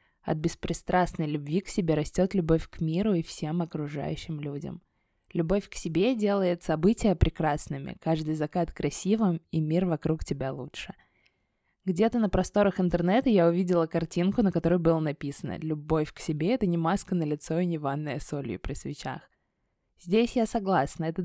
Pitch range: 155-185 Hz